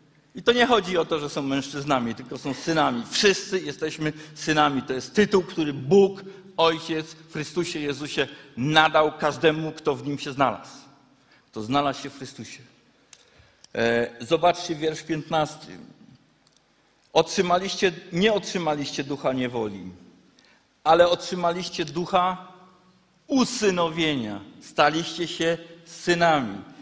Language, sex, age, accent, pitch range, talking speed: Polish, male, 50-69, native, 130-180 Hz, 115 wpm